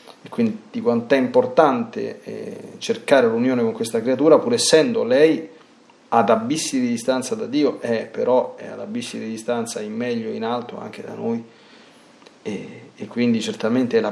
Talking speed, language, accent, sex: 175 wpm, Italian, native, male